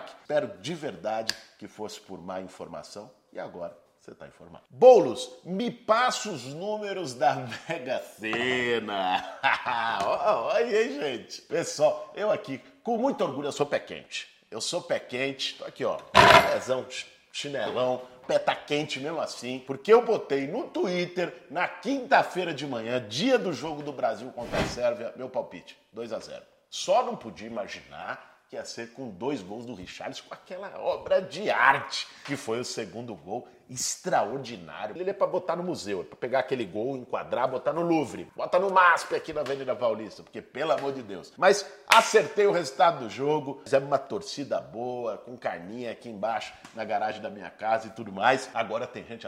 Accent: Brazilian